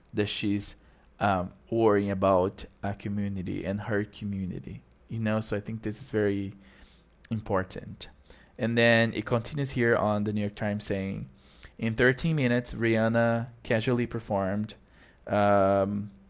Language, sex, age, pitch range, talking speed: English, male, 20-39, 100-115 Hz, 135 wpm